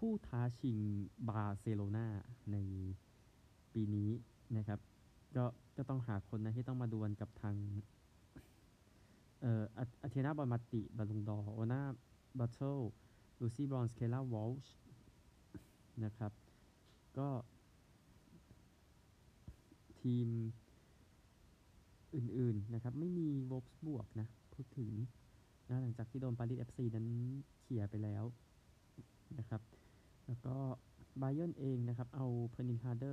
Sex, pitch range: male, 110-130 Hz